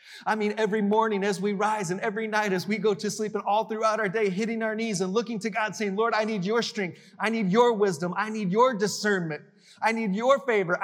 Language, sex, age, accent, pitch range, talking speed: English, male, 30-49, American, 170-220 Hz, 250 wpm